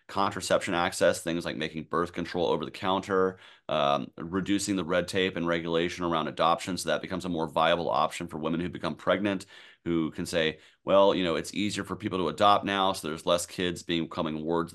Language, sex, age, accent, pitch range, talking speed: English, male, 30-49, American, 85-105 Hz, 210 wpm